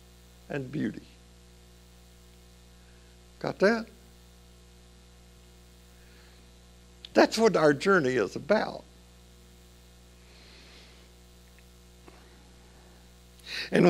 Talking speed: 50 wpm